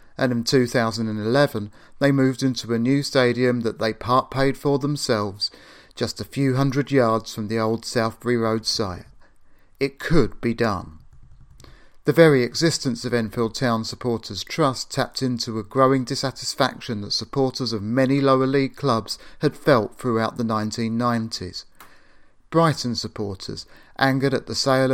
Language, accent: English, British